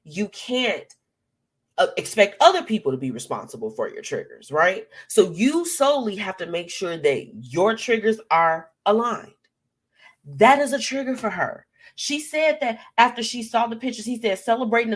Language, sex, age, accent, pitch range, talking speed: English, female, 30-49, American, 160-245 Hz, 170 wpm